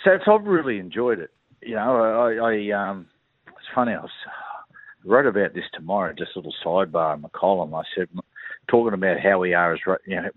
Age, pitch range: 50-69, 100-130 Hz